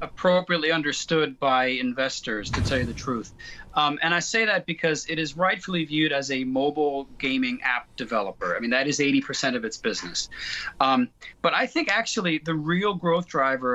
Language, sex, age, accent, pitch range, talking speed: English, male, 40-59, American, 130-170 Hz, 185 wpm